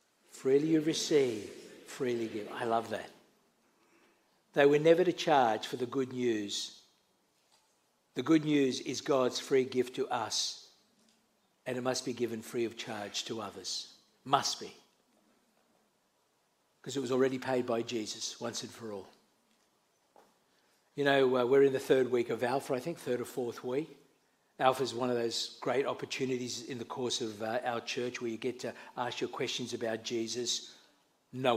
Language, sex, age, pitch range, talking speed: English, male, 60-79, 125-185 Hz, 170 wpm